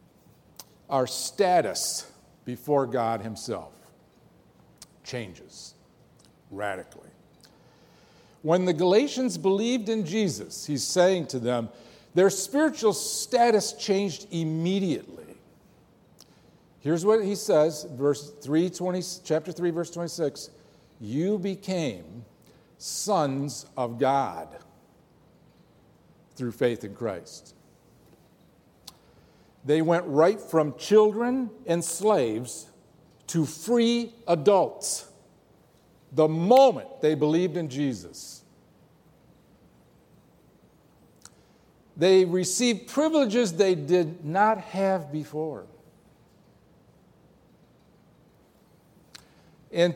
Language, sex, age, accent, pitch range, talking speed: English, male, 50-69, American, 145-195 Hz, 80 wpm